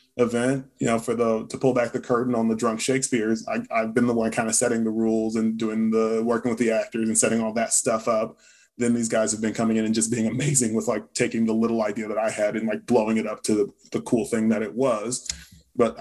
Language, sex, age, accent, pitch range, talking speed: English, male, 20-39, American, 115-135 Hz, 260 wpm